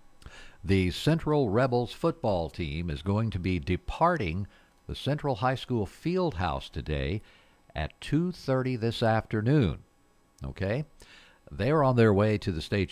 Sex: male